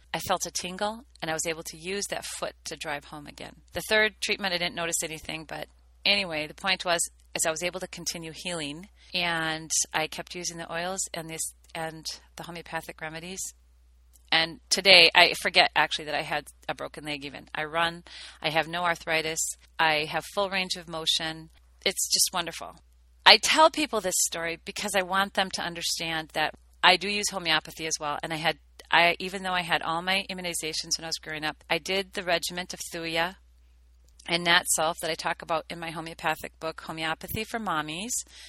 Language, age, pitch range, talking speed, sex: English, 40-59, 155-180 Hz, 200 wpm, female